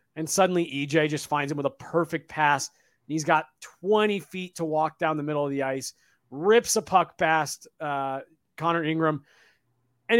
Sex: male